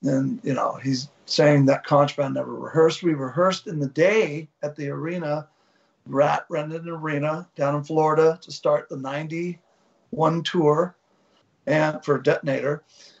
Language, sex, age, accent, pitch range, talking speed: English, male, 50-69, American, 140-175 Hz, 140 wpm